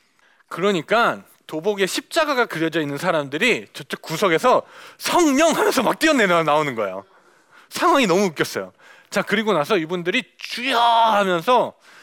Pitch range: 190-300 Hz